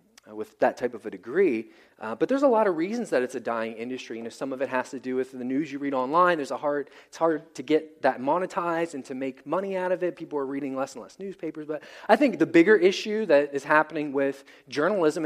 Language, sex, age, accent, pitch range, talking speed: English, male, 20-39, American, 135-185 Hz, 280 wpm